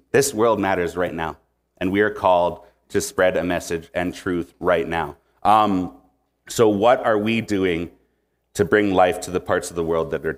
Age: 30-49